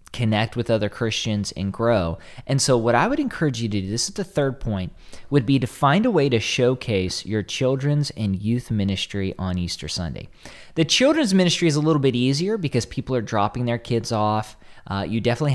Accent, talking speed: American, 210 wpm